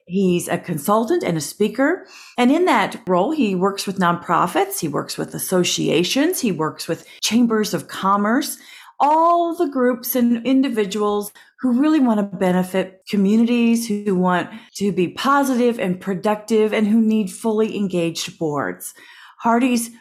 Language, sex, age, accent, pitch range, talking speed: English, female, 40-59, American, 180-260 Hz, 145 wpm